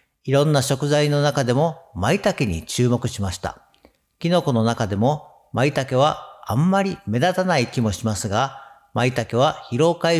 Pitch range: 115-165 Hz